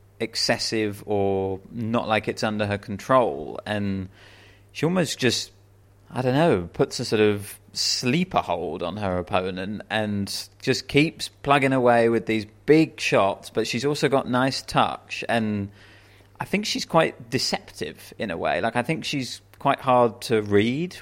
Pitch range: 100-120 Hz